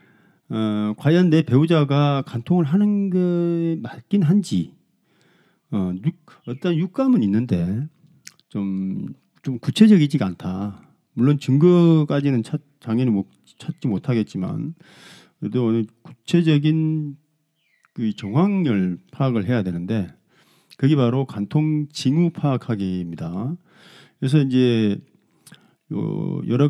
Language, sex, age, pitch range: Korean, male, 40-59, 105-165 Hz